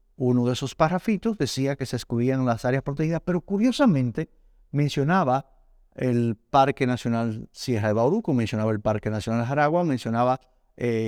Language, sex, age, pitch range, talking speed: Spanish, male, 50-69, 125-165 Hz, 150 wpm